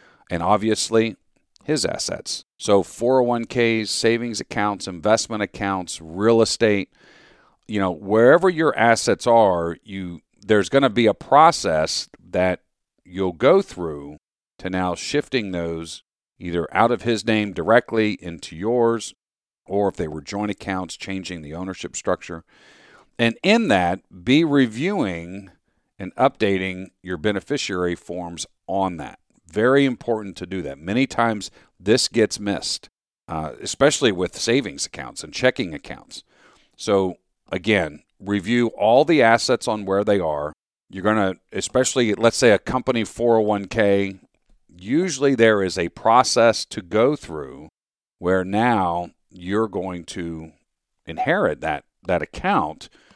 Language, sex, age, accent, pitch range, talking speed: English, male, 50-69, American, 90-115 Hz, 130 wpm